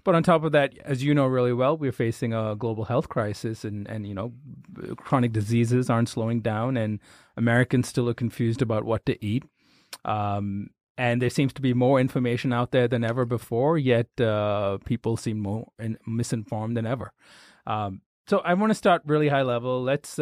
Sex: male